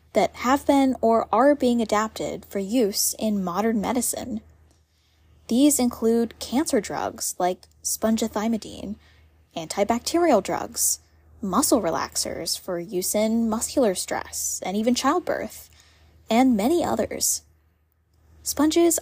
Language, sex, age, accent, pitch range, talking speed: English, female, 10-29, American, 185-255 Hz, 105 wpm